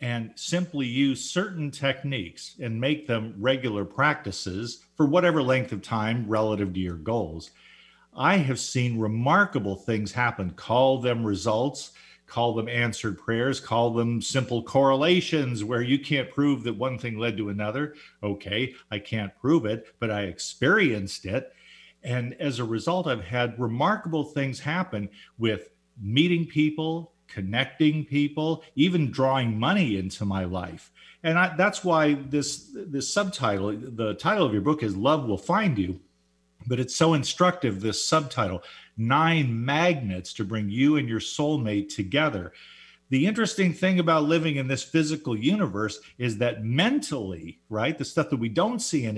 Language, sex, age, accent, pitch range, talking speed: English, male, 50-69, American, 110-150 Hz, 155 wpm